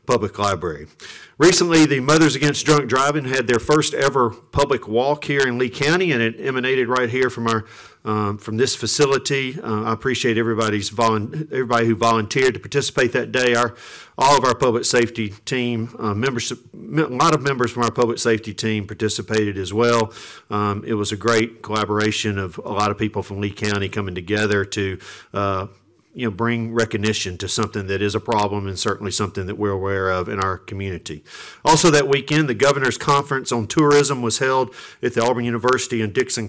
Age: 50-69